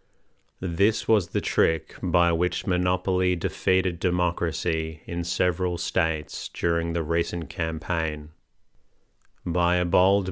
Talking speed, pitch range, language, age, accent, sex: 110 wpm, 85-95 Hz, English, 30-49, Australian, male